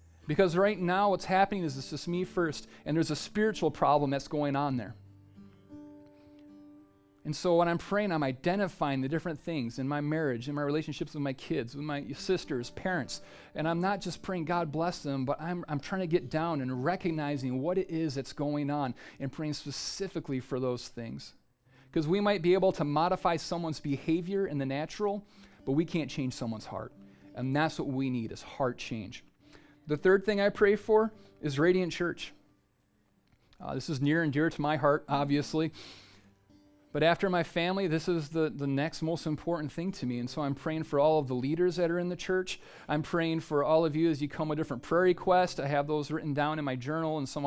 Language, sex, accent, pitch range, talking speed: English, male, American, 140-175 Hz, 210 wpm